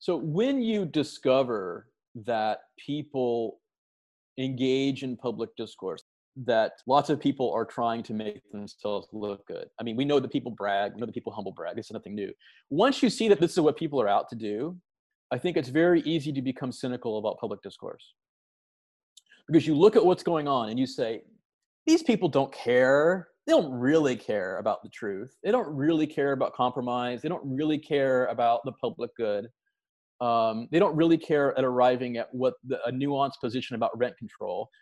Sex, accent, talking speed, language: male, American, 190 wpm, English